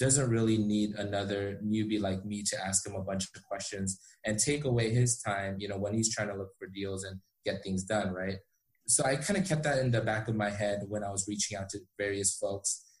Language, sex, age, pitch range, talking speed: English, male, 20-39, 100-120 Hz, 245 wpm